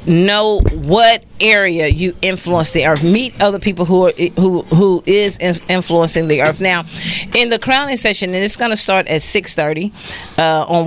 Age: 40-59